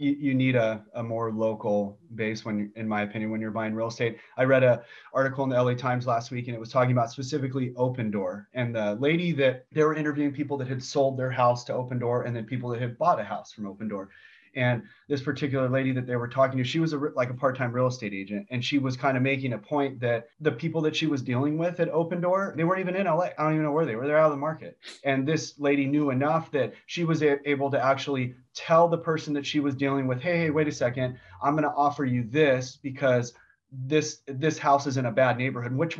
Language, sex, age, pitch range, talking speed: English, male, 30-49, 120-145 Hz, 260 wpm